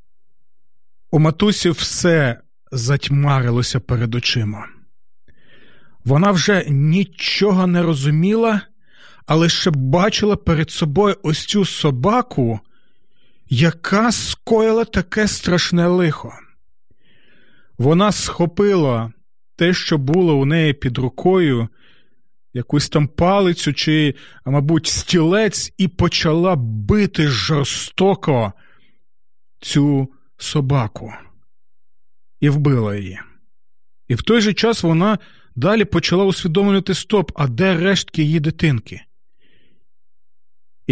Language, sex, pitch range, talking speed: Ukrainian, male, 130-190 Hz, 95 wpm